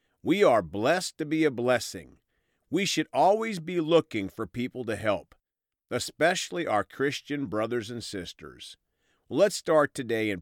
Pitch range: 105-155 Hz